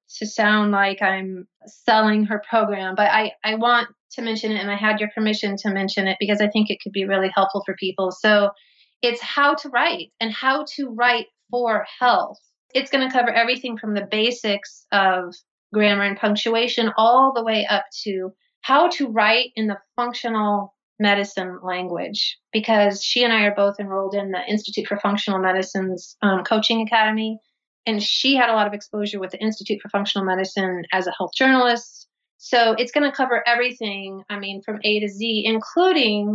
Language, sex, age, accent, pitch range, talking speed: English, female, 30-49, American, 200-240 Hz, 190 wpm